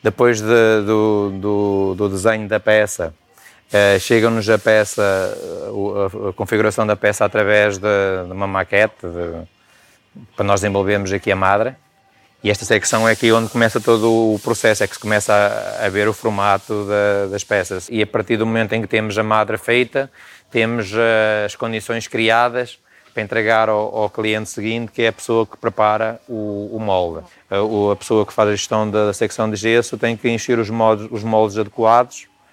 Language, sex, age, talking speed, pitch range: Portuguese, male, 20-39, 190 wpm, 105-115 Hz